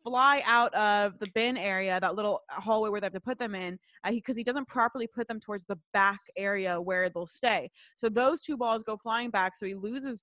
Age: 20-39